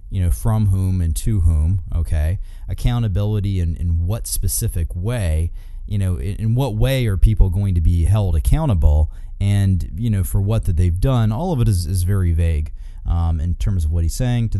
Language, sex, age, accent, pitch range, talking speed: English, male, 30-49, American, 90-115 Hz, 205 wpm